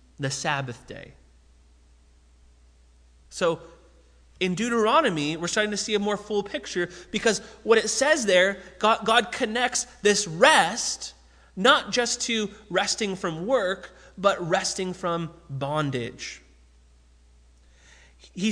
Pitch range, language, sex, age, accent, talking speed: 130-190 Hz, English, male, 30-49, American, 115 wpm